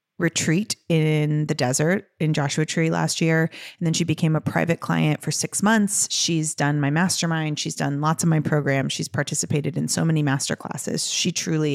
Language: English